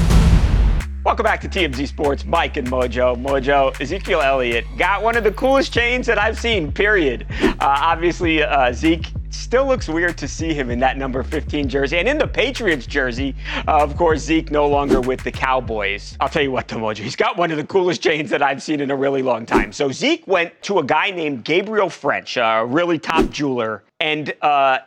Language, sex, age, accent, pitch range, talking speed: English, male, 40-59, American, 135-195 Hz, 210 wpm